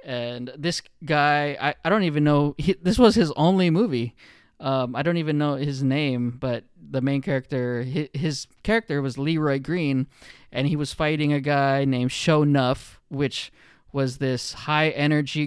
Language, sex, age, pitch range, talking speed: English, male, 20-39, 130-160 Hz, 165 wpm